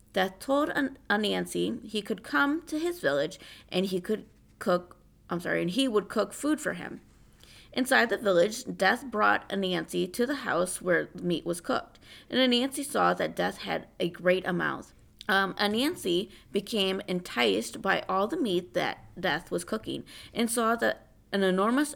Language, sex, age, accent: English, female, 20-39, American